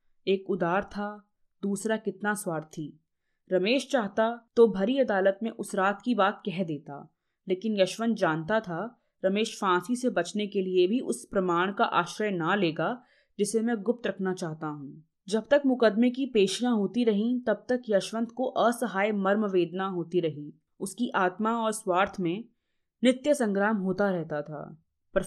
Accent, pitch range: native, 175-225 Hz